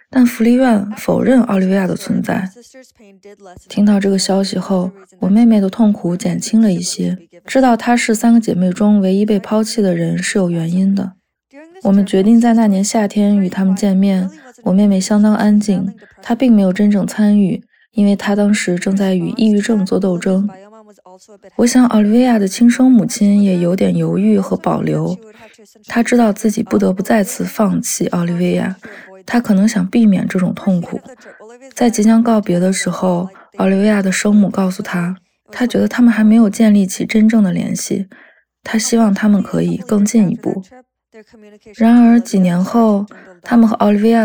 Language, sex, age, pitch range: Chinese, female, 20-39, 190-225 Hz